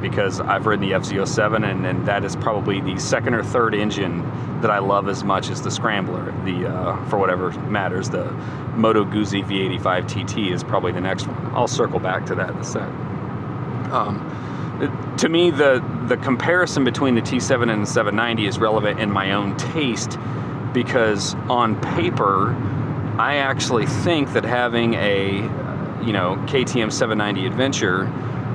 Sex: male